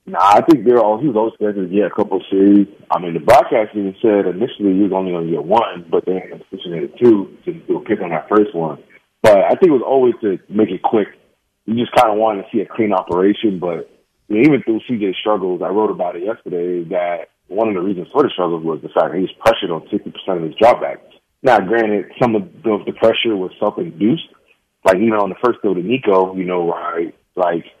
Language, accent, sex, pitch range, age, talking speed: English, American, male, 90-115 Hz, 30-49, 245 wpm